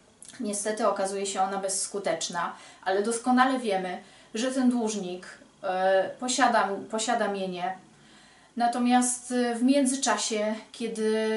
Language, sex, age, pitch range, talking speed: Polish, female, 30-49, 200-230 Hz, 95 wpm